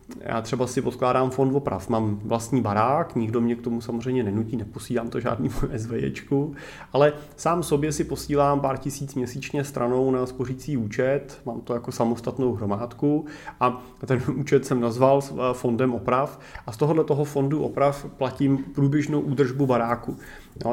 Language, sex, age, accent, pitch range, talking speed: Czech, male, 30-49, native, 110-135 Hz, 155 wpm